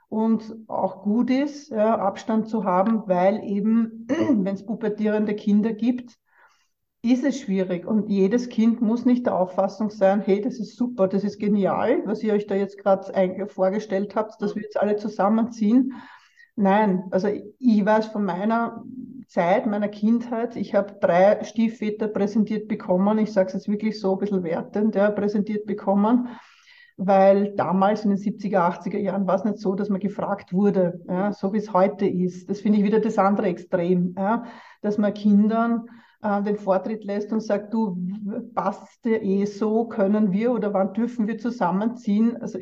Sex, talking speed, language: female, 170 wpm, German